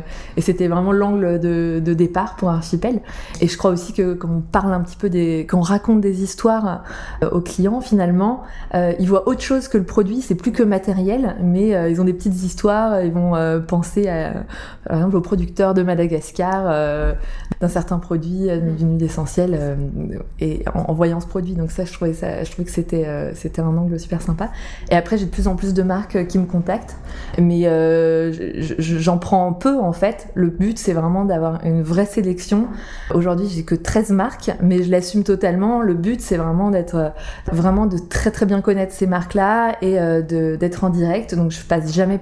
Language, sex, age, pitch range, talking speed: French, female, 20-39, 170-200 Hz, 210 wpm